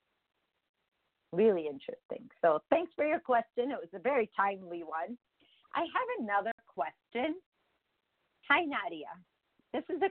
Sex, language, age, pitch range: female, English, 50-69, 180-265 Hz